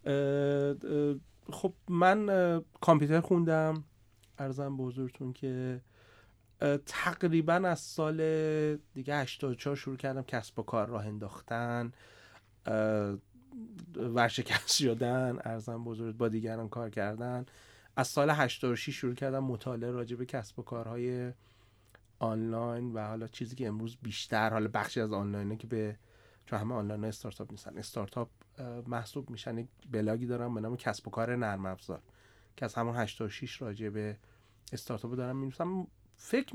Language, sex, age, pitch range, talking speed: Persian, male, 30-49, 110-130 Hz, 130 wpm